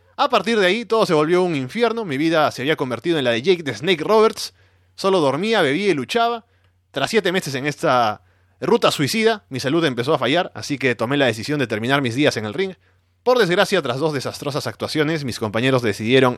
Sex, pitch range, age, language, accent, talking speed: male, 120-180 Hz, 20-39, Spanish, Argentinian, 215 wpm